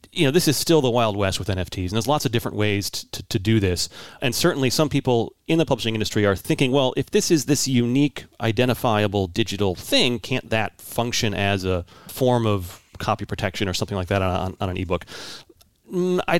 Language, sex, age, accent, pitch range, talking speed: English, male, 30-49, American, 100-125 Hz, 215 wpm